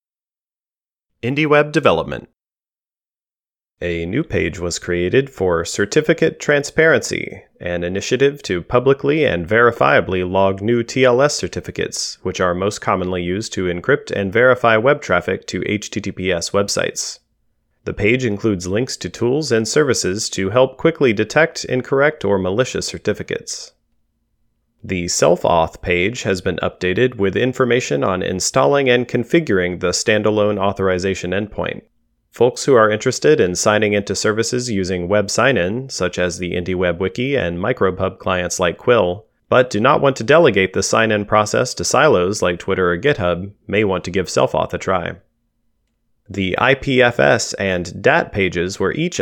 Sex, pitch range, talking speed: male, 95-120 Hz, 140 wpm